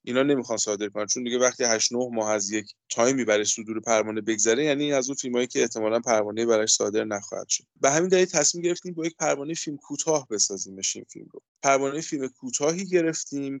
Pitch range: 115-145 Hz